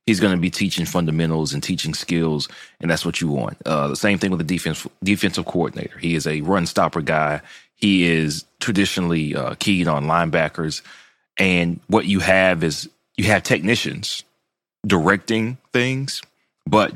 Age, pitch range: 30-49, 80-100 Hz